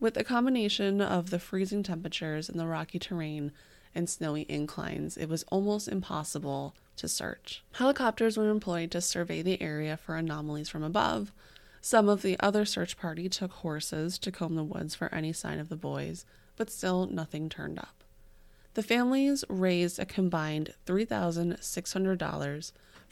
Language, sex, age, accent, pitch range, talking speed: English, female, 20-39, American, 155-200 Hz, 155 wpm